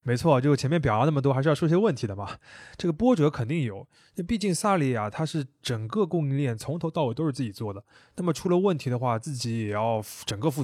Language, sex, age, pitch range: Chinese, male, 20-39, 115-155 Hz